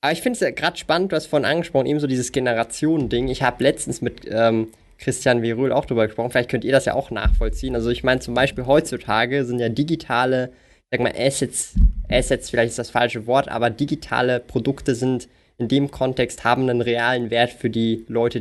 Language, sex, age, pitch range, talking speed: German, male, 20-39, 115-140 Hz, 215 wpm